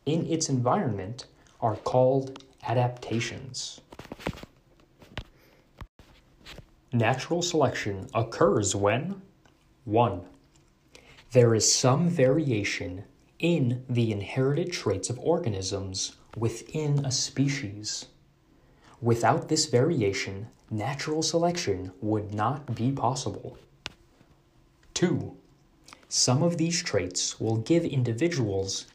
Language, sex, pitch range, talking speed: English, male, 110-155 Hz, 85 wpm